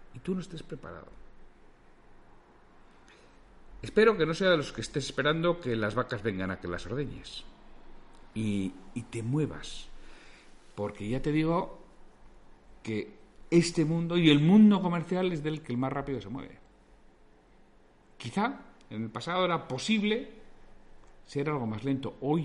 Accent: Spanish